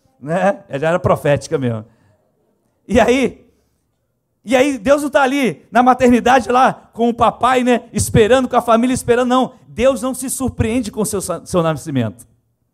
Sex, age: male, 40-59